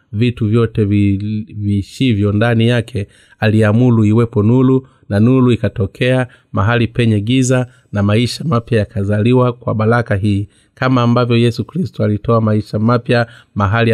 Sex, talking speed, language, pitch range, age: male, 125 wpm, Swahili, 105-120 Hz, 30-49